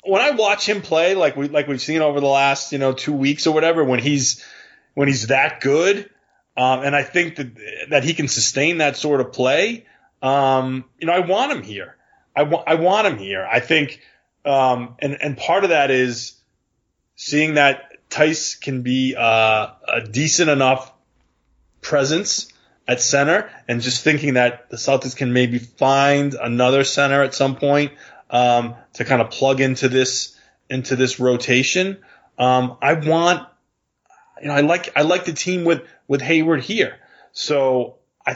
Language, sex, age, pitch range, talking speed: English, male, 20-39, 120-150 Hz, 175 wpm